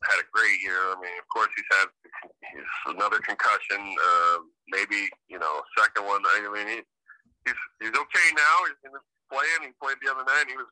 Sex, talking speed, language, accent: male, 200 wpm, English, American